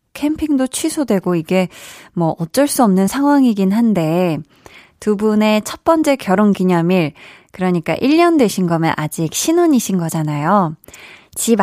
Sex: female